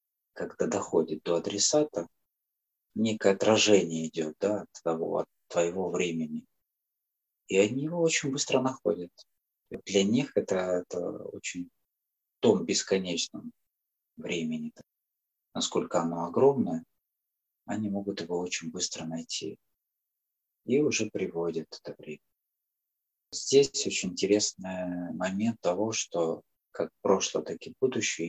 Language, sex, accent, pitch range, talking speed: Russian, male, native, 85-110 Hz, 115 wpm